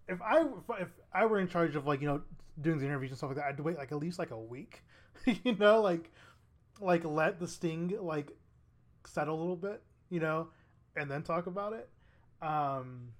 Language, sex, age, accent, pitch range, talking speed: English, male, 20-39, American, 130-165 Hz, 210 wpm